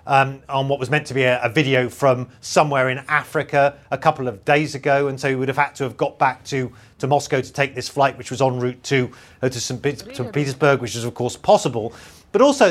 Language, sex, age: English, male, 40-59